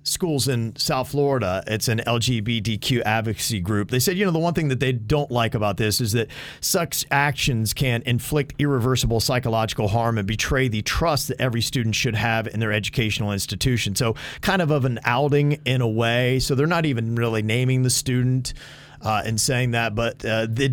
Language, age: English, 40-59